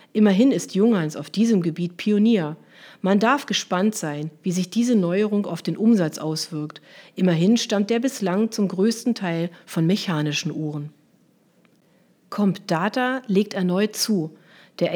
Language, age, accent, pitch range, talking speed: German, 40-59, German, 175-220 Hz, 135 wpm